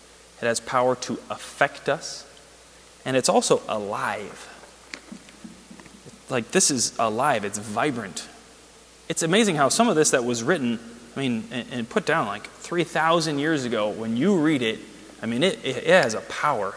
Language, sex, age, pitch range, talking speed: English, male, 30-49, 125-160 Hz, 160 wpm